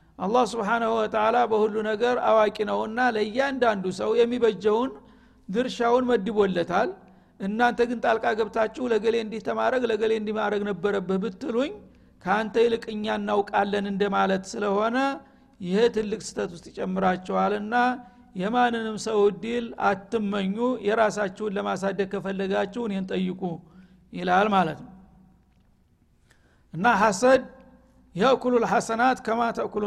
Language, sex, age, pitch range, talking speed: Amharic, male, 60-79, 200-235 Hz, 95 wpm